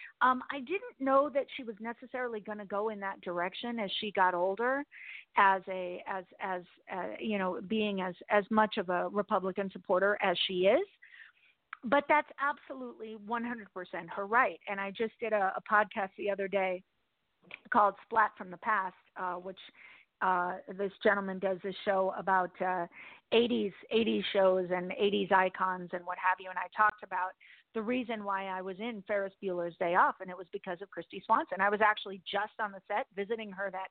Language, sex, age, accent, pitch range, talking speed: English, female, 40-59, American, 190-230 Hz, 190 wpm